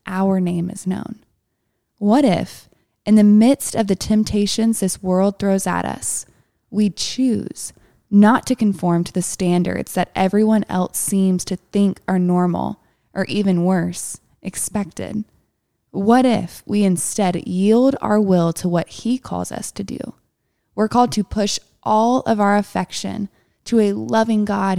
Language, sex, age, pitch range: English, female, 20-39, 185-225 Hz